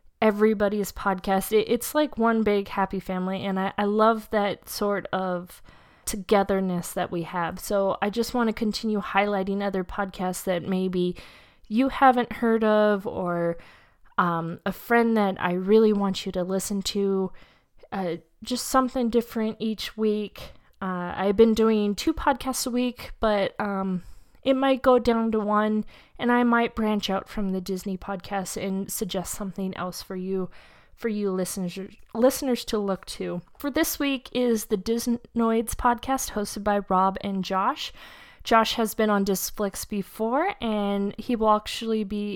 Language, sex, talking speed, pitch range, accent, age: English, female, 160 wpm, 190-230 Hz, American, 20-39